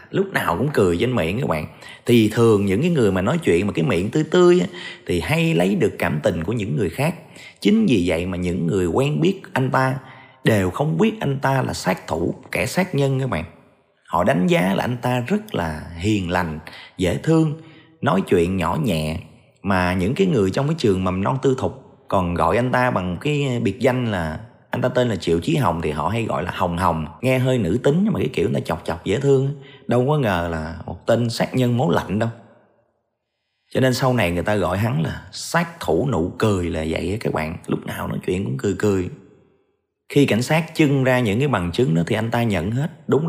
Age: 20-39